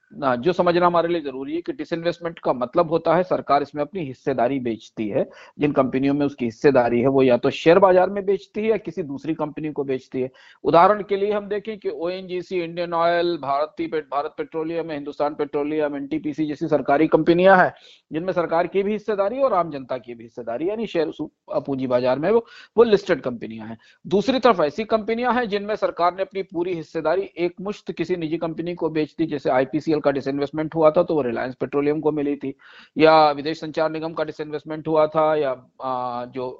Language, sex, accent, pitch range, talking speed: Hindi, male, native, 140-185 Hz, 200 wpm